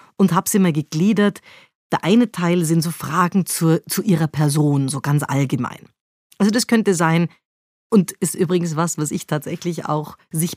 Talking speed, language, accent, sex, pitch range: 175 wpm, German, German, female, 160-195 Hz